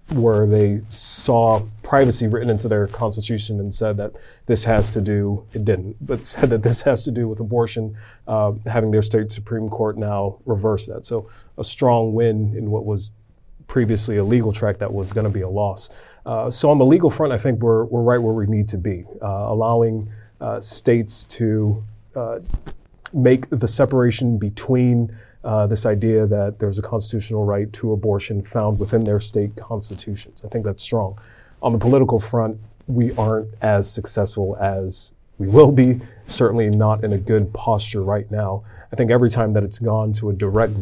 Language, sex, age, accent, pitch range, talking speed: English, male, 30-49, American, 105-115 Hz, 190 wpm